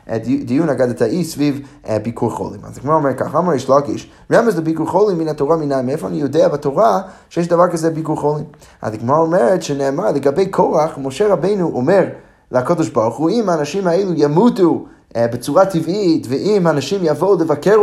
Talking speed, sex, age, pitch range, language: 170 wpm, male, 20-39, 130-175 Hz, Hebrew